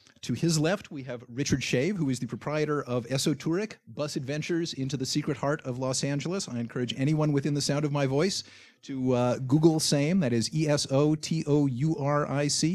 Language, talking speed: English, 180 wpm